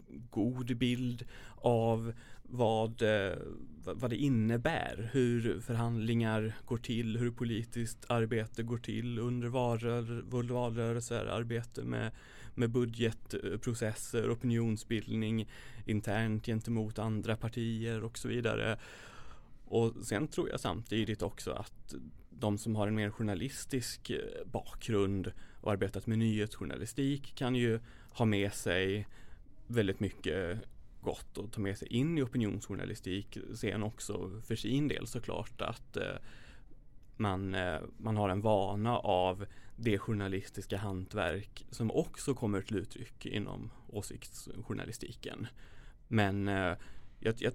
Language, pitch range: Swedish, 105-120 Hz